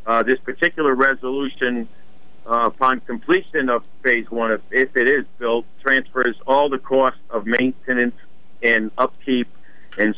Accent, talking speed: American, 140 wpm